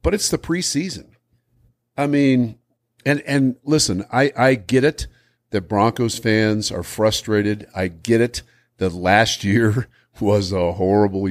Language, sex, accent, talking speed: English, male, American, 145 wpm